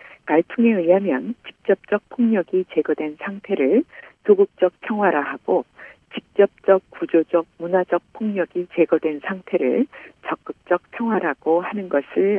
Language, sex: Korean, female